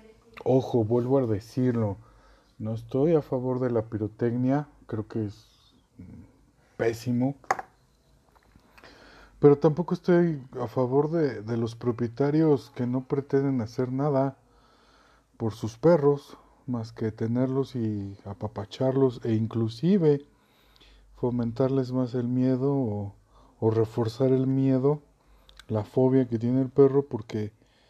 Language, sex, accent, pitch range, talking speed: Spanish, male, Mexican, 115-135 Hz, 120 wpm